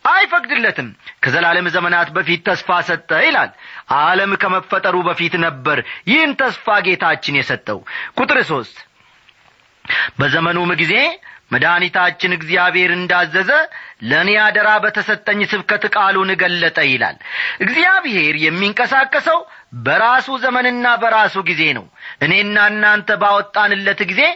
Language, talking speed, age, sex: Amharic, 95 wpm, 30-49, male